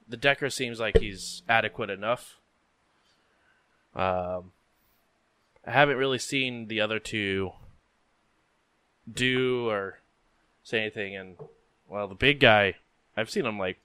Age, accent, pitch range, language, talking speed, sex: 20-39, American, 90-115 Hz, English, 120 wpm, male